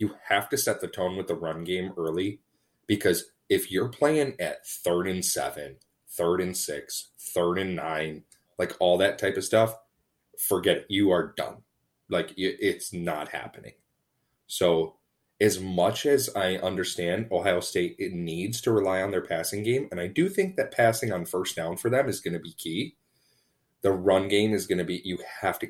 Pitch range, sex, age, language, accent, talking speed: 85-115 Hz, male, 30-49, English, American, 190 wpm